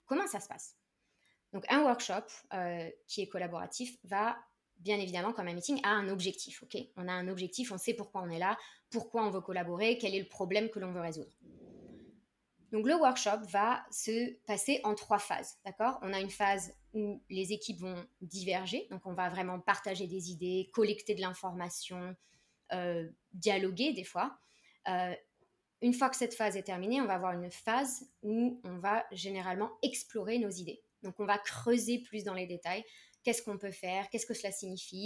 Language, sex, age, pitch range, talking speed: French, female, 20-39, 185-230 Hz, 190 wpm